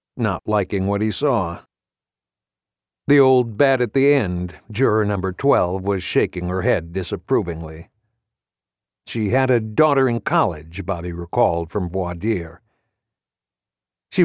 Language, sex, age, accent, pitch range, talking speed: English, male, 60-79, American, 95-125 Hz, 125 wpm